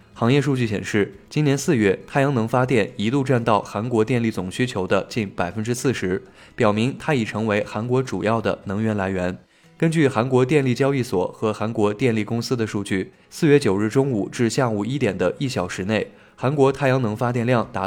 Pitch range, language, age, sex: 105-130 Hz, Chinese, 20-39, male